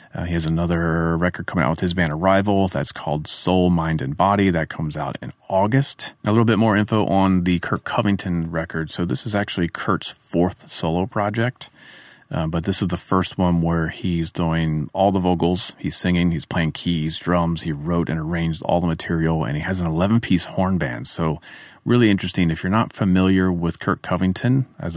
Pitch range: 80-100 Hz